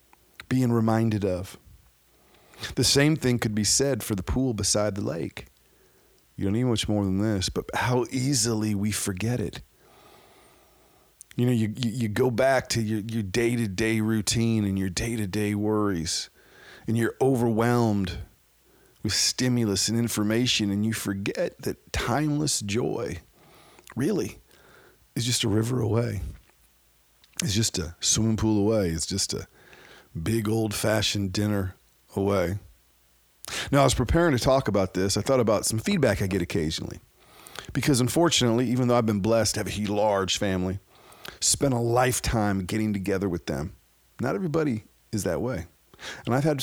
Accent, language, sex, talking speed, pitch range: American, English, male, 155 wpm, 100-125 Hz